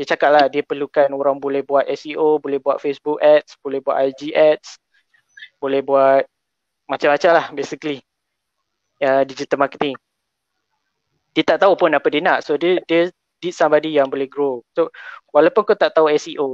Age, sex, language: 20-39, male, Malay